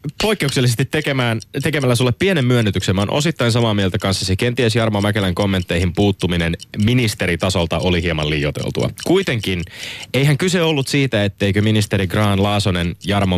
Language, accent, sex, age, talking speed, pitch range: Finnish, native, male, 20-39, 145 wpm, 100-135 Hz